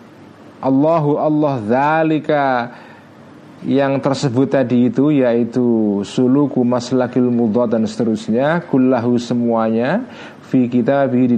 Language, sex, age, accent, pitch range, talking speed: Indonesian, male, 40-59, native, 115-140 Hz, 90 wpm